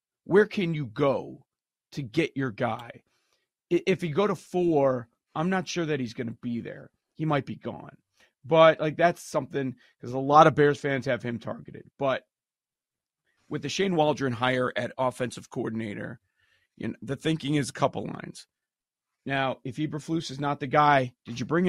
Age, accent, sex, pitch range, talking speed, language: 40-59, American, male, 130-155 Hz, 185 wpm, English